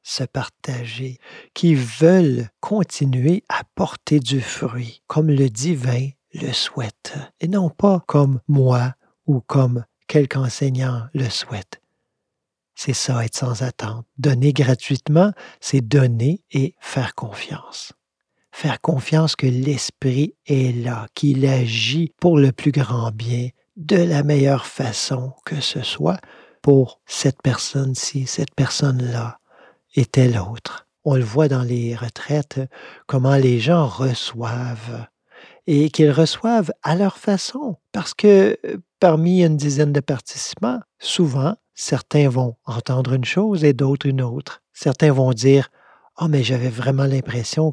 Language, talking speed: French, 135 wpm